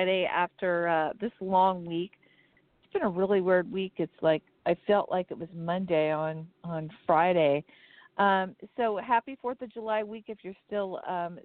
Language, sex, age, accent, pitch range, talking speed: English, female, 50-69, American, 180-210 Hz, 175 wpm